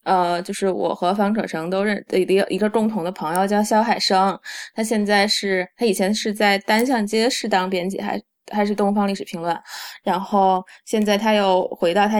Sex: female